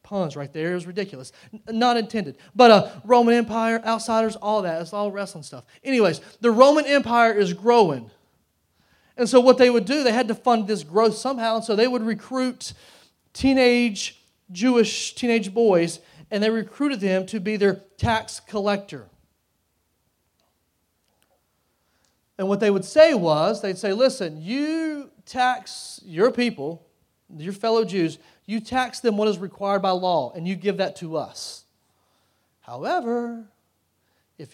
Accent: American